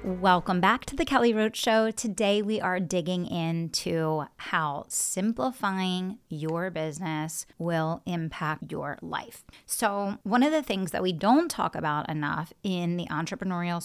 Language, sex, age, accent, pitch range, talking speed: English, female, 30-49, American, 165-200 Hz, 145 wpm